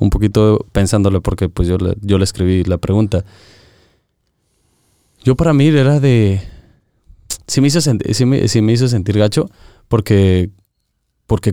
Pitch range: 100-130 Hz